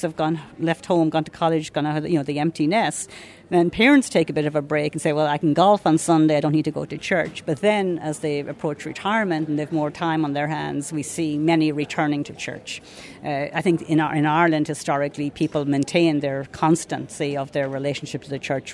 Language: English